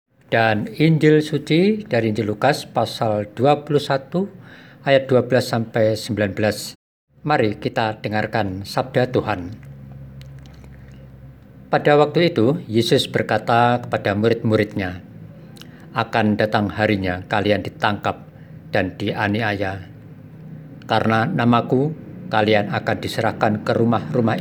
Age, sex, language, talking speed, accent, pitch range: 50-69, male, Indonesian, 90 wpm, native, 105-130 Hz